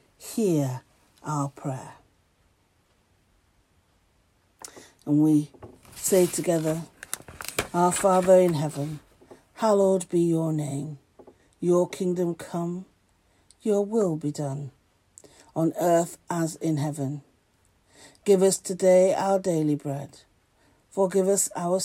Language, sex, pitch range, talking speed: English, female, 135-190 Hz, 100 wpm